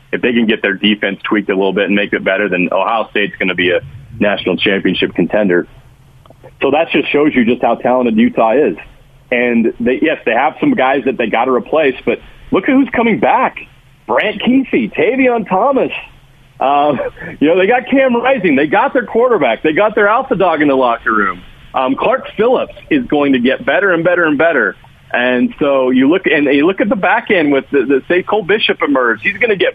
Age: 40-59